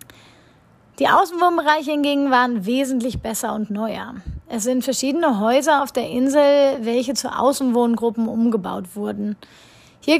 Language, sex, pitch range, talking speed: German, female, 235-280 Hz, 125 wpm